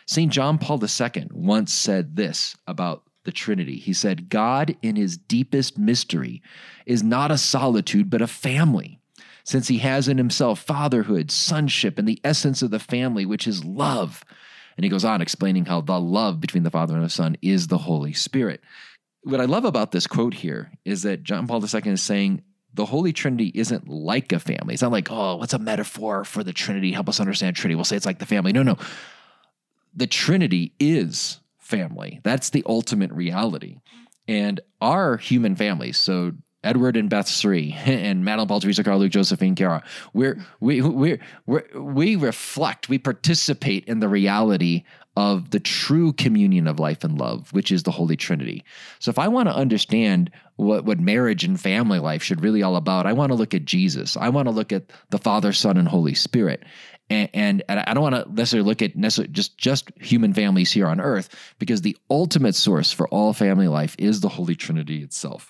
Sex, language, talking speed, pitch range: male, English, 195 wpm, 100-165 Hz